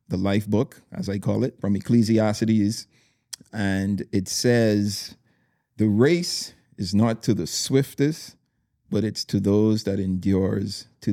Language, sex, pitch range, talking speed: English, male, 100-120 Hz, 140 wpm